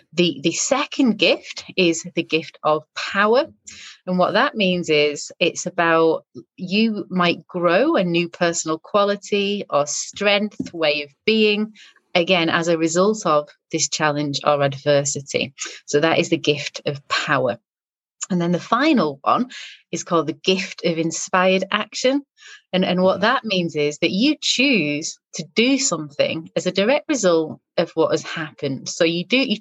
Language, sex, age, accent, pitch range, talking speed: English, female, 30-49, British, 155-205 Hz, 160 wpm